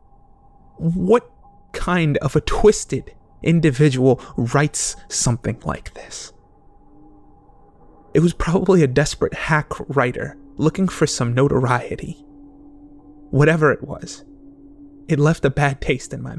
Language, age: English, 30-49